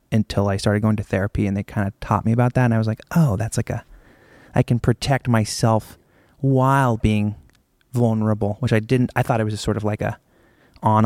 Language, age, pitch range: English, 20-39, 105-120 Hz